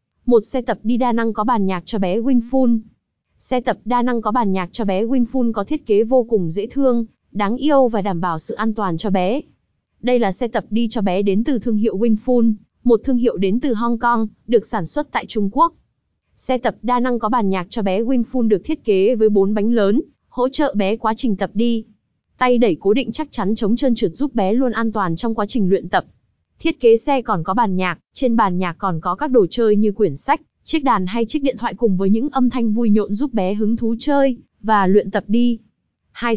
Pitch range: 205-245 Hz